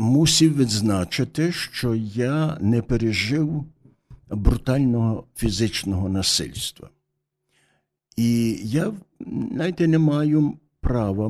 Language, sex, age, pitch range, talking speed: Ukrainian, male, 60-79, 100-135 Hz, 80 wpm